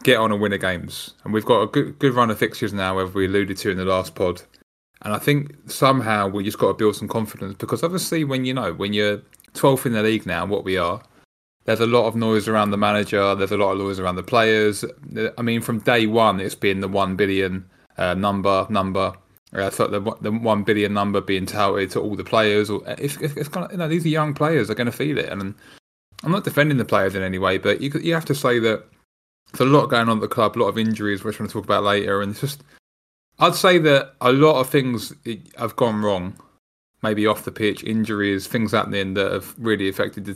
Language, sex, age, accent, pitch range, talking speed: English, male, 20-39, British, 100-120 Hz, 255 wpm